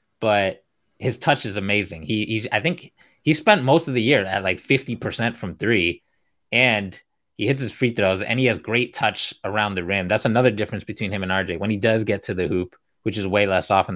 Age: 20-39